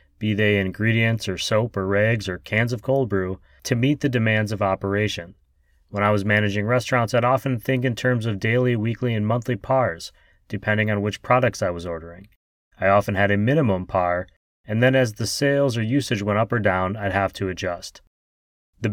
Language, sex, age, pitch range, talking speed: English, male, 30-49, 95-125 Hz, 200 wpm